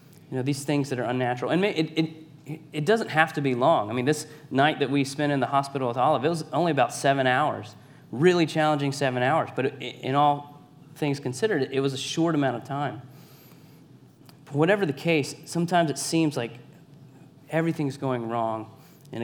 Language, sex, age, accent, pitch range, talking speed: English, male, 30-49, American, 130-150 Hz, 185 wpm